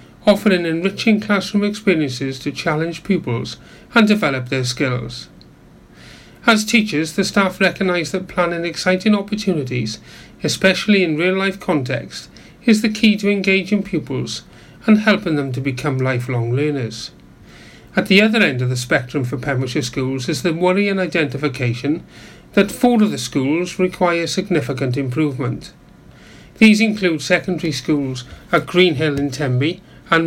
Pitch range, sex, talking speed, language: 145-195 Hz, male, 135 wpm, English